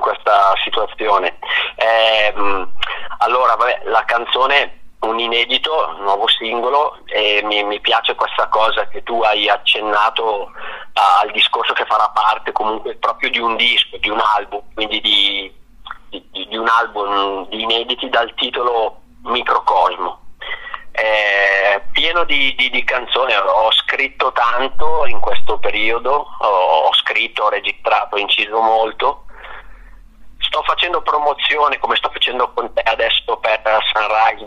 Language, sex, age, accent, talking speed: Italian, male, 30-49, native, 135 wpm